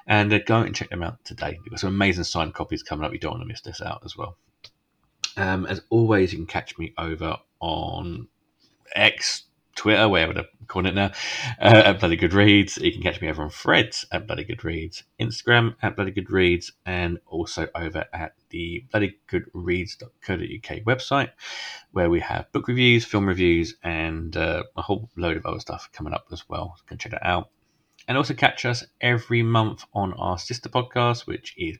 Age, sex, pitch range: 30-49, male, 85-115 Hz